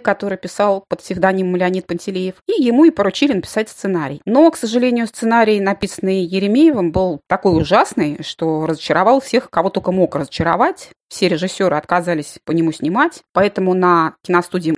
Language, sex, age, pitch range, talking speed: Russian, female, 20-39, 175-245 Hz, 150 wpm